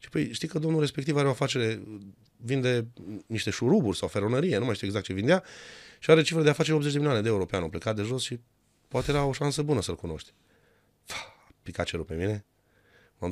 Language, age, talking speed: Romanian, 30-49, 210 wpm